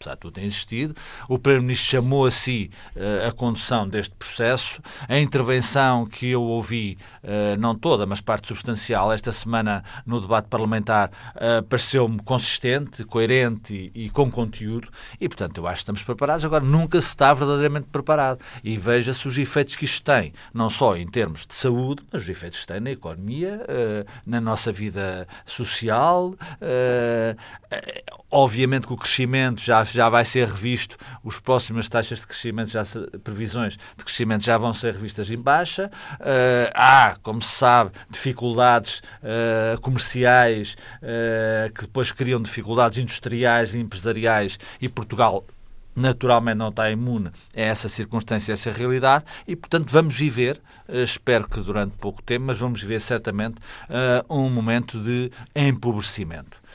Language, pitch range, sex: Portuguese, 110-125 Hz, male